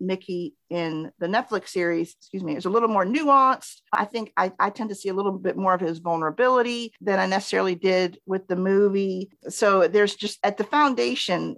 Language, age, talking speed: English, 50-69, 200 wpm